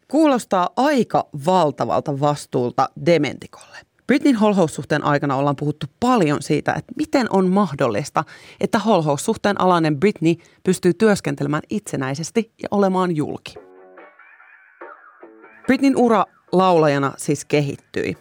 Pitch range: 150-195 Hz